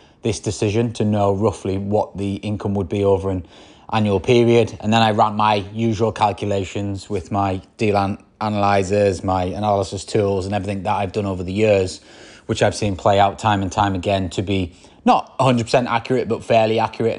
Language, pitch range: English, 100-115 Hz